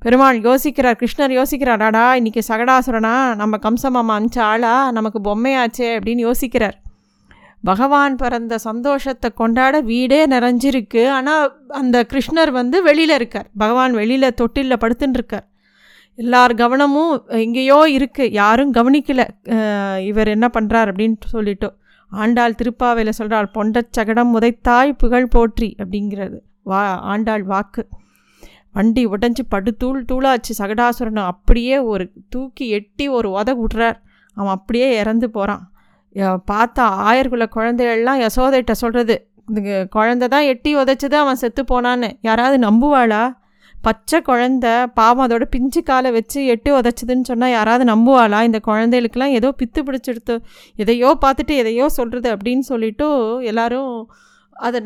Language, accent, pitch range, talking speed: Tamil, native, 220-260 Hz, 120 wpm